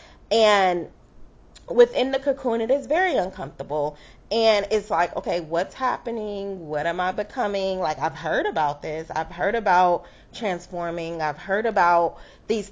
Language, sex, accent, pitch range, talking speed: English, female, American, 170-220 Hz, 145 wpm